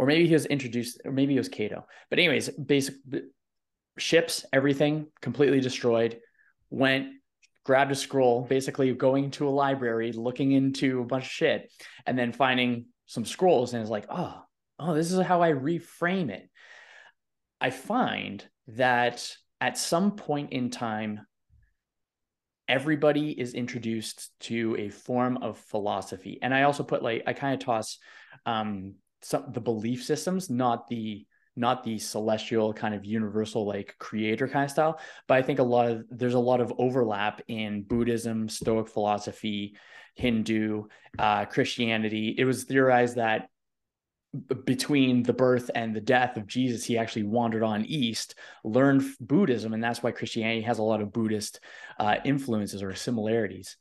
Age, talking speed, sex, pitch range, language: 20-39, 155 wpm, male, 110-135 Hz, English